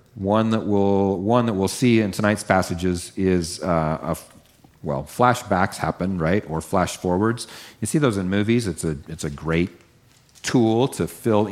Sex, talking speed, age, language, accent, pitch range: male, 175 wpm, 40-59, English, American, 85-110 Hz